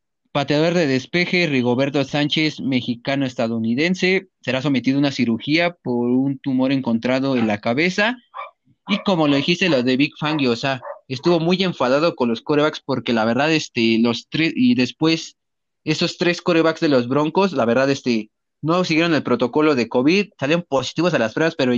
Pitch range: 125-160 Hz